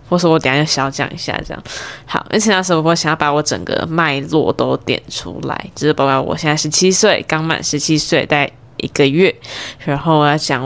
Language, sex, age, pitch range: Chinese, female, 10-29, 150-195 Hz